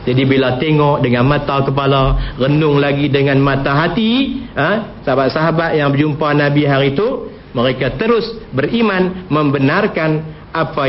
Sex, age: male, 50-69